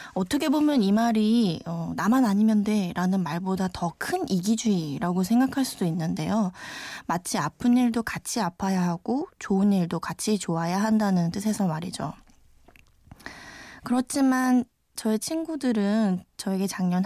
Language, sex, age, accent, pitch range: Korean, female, 20-39, native, 180-240 Hz